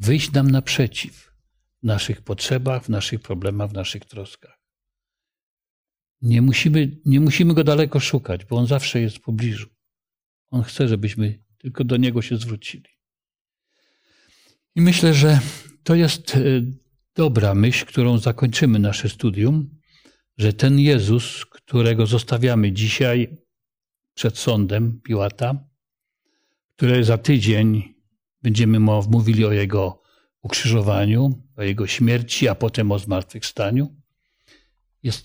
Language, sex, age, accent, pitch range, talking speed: Polish, male, 50-69, native, 105-135 Hz, 115 wpm